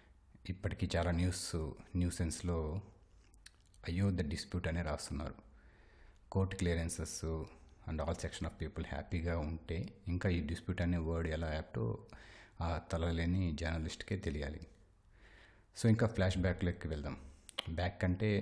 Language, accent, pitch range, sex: Telugu, native, 85-100 Hz, male